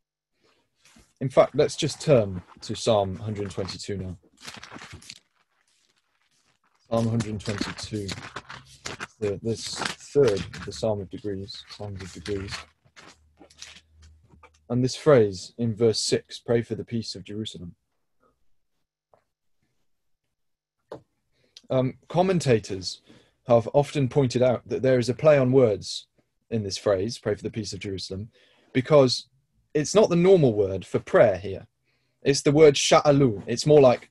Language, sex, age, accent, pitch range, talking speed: English, male, 20-39, British, 100-140 Hz, 125 wpm